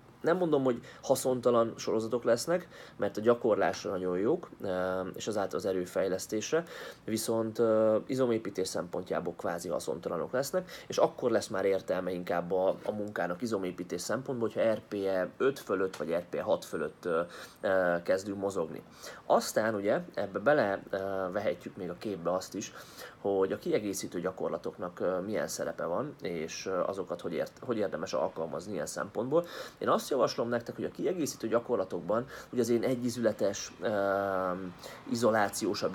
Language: Hungarian